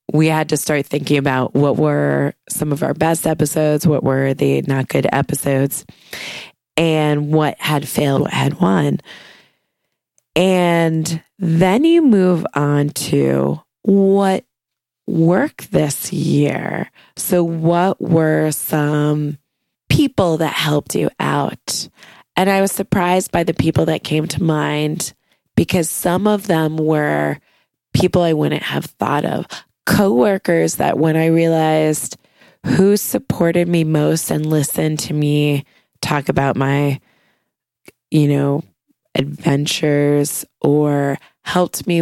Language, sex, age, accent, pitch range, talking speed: English, female, 20-39, American, 145-170 Hz, 125 wpm